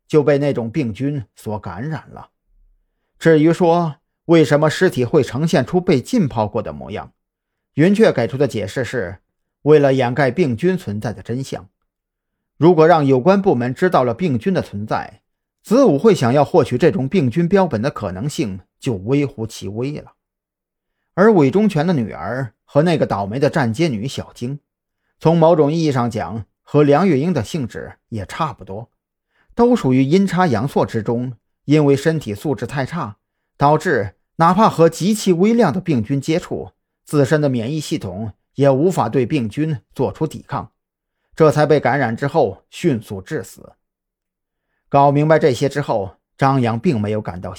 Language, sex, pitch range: Chinese, male, 115-165 Hz